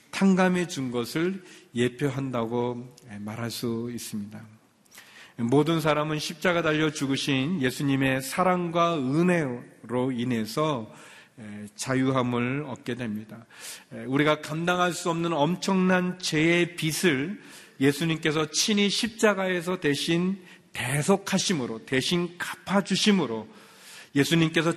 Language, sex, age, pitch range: Korean, male, 40-59, 120-175 Hz